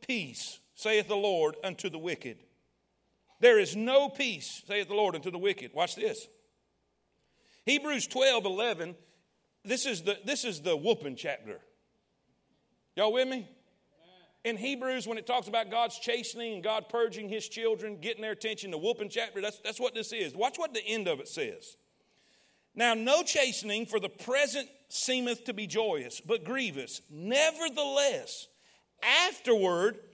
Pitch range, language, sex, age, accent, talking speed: 215-310 Hz, English, male, 50-69, American, 150 wpm